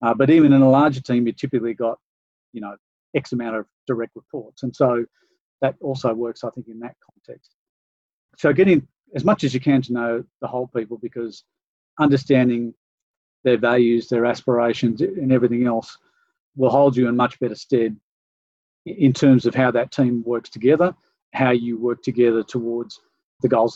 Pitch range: 120-140 Hz